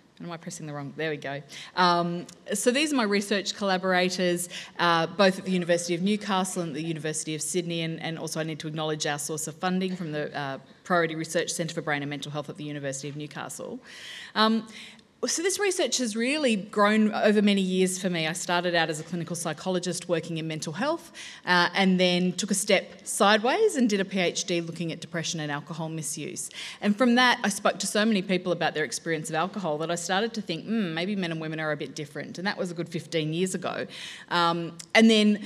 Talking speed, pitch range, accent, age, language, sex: 225 wpm, 155-190 Hz, Australian, 20-39, English, female